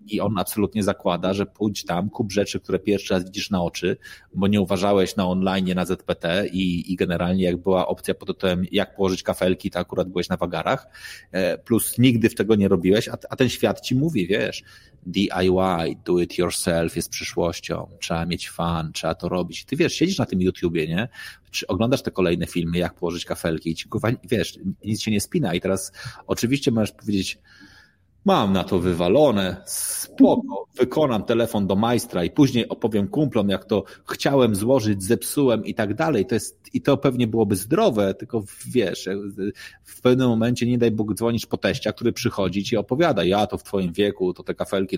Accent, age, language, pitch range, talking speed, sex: native, 30-49, Polish, 90-115 Hz, 190 wpm, male